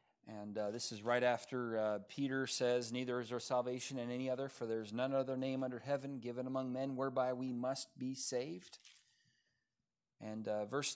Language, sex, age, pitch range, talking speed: English, male, 40-59, 130-160 Hz, 190 wpm